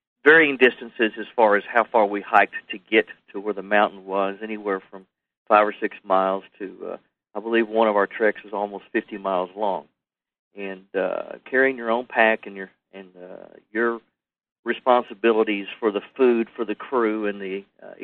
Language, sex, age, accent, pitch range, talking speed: English, male, 50-69, American, 95-115 Hz, 185 wpm